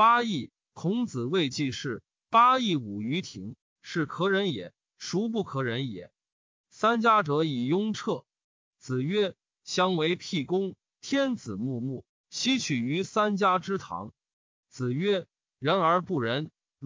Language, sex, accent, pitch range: Chinese, male, native, 140-205 Hz